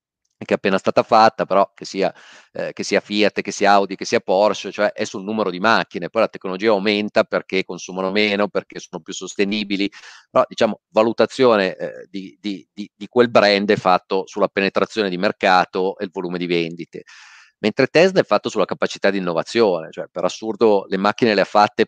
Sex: male